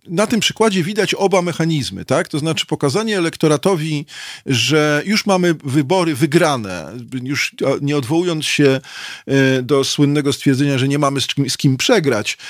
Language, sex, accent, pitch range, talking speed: Polish, male, native, 140-175 Hz, 140 wpm